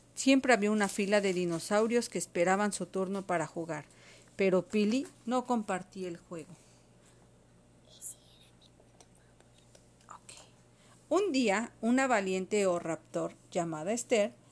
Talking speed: 110 wpm